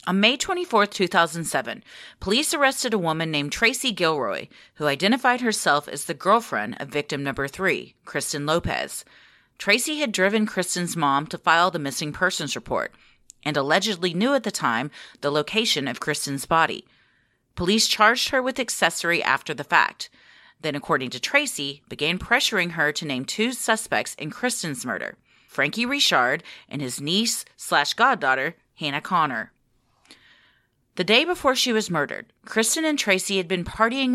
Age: 30-49